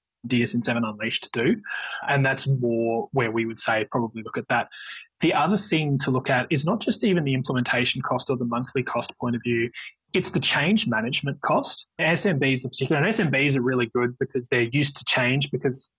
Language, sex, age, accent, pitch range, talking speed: English, male, 20-39, Australian, 120-135 Hz, 195 wpm